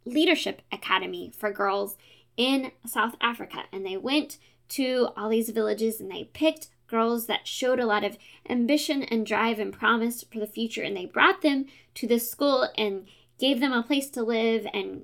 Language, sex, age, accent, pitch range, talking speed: English, female, 10-29, American, 215-270 Hz, 185 wpm